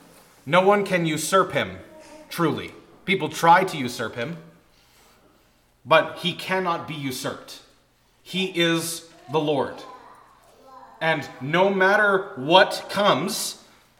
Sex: male